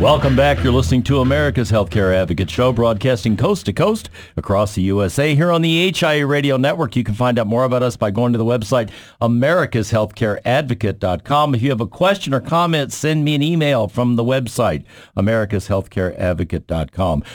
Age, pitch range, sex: 50-69, 115-150 Hz, male